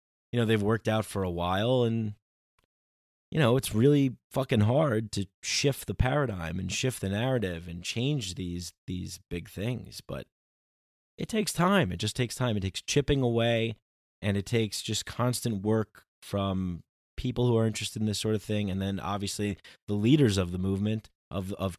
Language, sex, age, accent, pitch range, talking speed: English, male, 20-39, American, 90-115 Hz, 185 wpm